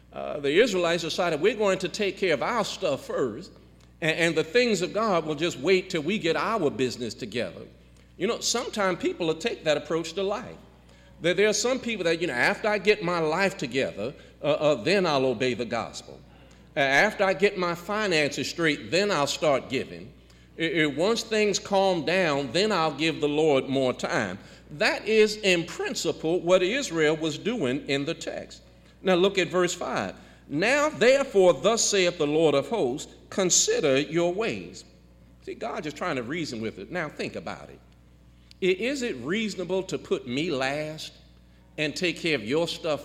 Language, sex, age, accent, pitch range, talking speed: English, male, 50-69, American, 140-190 Hz, 185 wpm